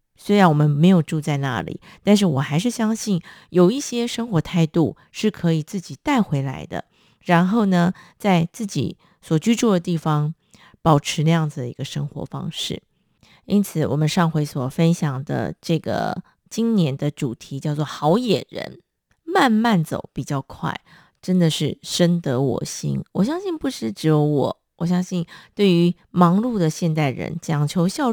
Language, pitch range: Chinese, 150-205 Hz